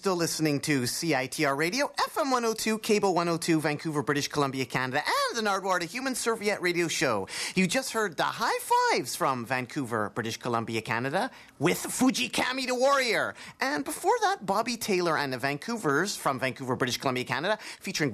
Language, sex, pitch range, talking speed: English, male, 140-225 Hz, 160 wpm